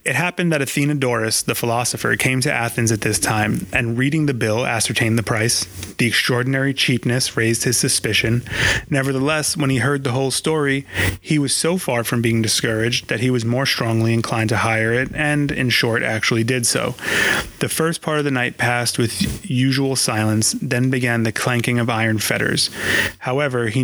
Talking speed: 185 wpm